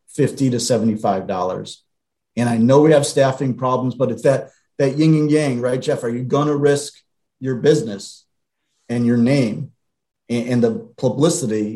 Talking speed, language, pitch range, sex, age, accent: 170 wpm, English, 115-130 Hz, male, 40-59, American